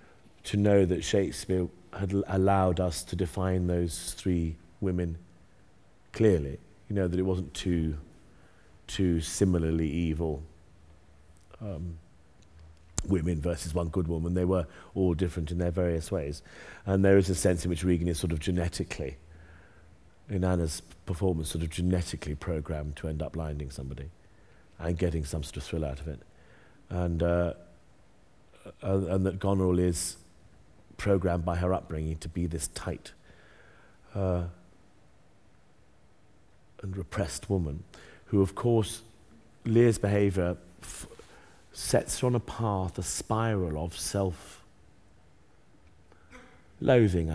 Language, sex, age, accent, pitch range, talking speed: English, male, 40-59, British, 80-95 Hz, 125 wpm